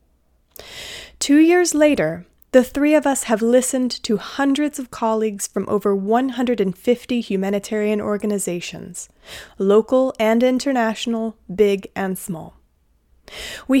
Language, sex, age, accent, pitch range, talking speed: English, female, 30-49, American, 200-250 Hz, 110 wpm